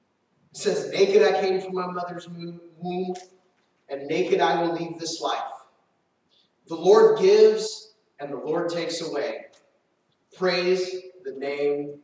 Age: 30-49